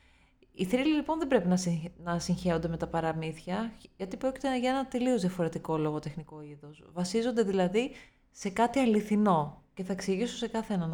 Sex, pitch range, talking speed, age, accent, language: female, 165-240 Hz, 165 wpm, 20-39, native, Greek